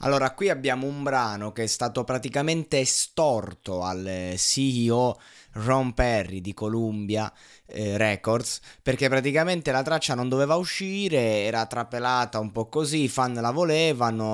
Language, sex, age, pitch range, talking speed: Italian, male, 20-39, 110-140 Hz, 140 wpm